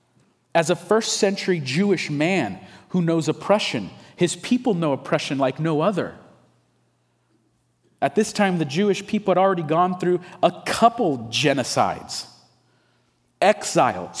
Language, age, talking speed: English, 30-49, 125 wpm